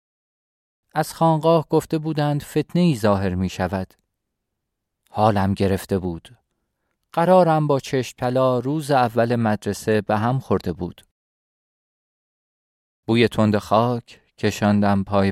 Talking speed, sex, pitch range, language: 105 wpm, male, 105-155 Hz, Persian